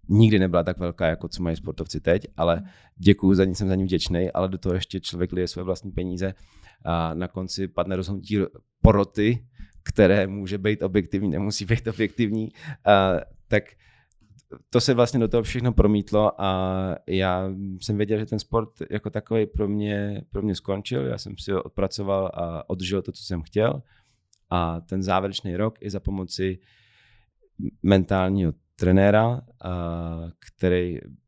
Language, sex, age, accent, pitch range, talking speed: Czech, male, 30-49, native, 90-105 Hz, 160 wpm